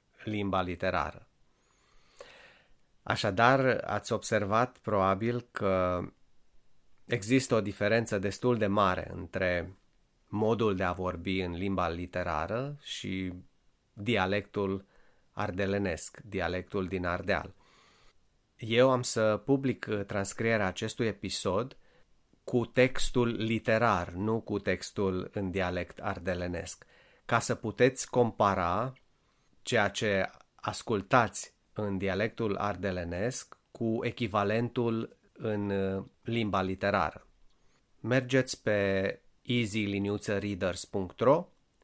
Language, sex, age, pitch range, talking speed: Romanian, male, 30-49, 95-115 Hz, 85 wpm